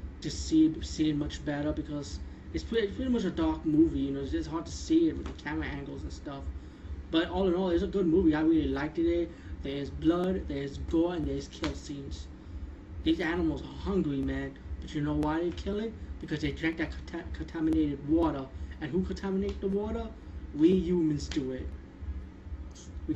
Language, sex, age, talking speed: English, male, 20-39, 195 wpm